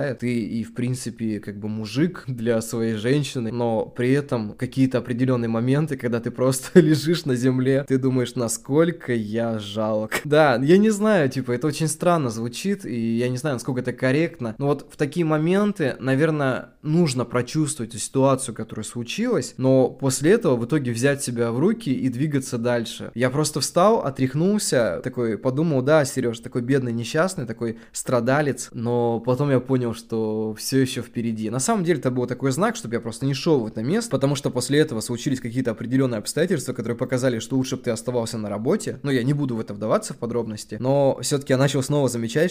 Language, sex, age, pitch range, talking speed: Russian, male, 20-39, 120-145 Hz, 190 wpm